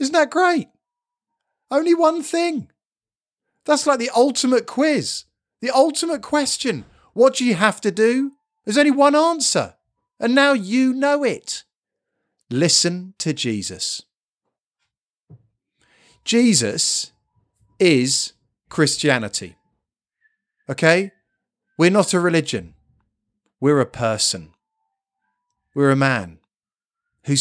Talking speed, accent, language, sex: 105 wpm, British, English, male